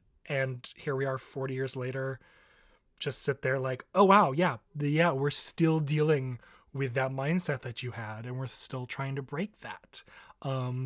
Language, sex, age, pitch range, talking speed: English, male, 20-39, 135-175 Hz, 175 wpm